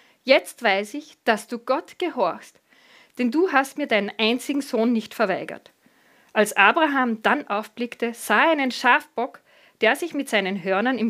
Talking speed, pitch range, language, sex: 160 wpm, 210-280 Hz, German, female